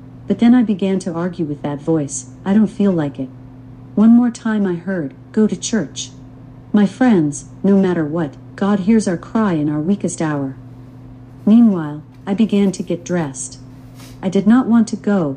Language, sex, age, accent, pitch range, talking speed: English, female, 50-69, American, 130-205 Hz, 185 wpm